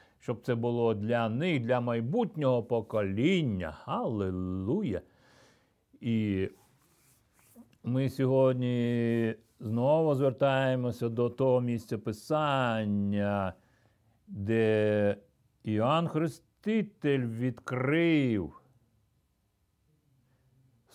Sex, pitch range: male, 115-155 Hz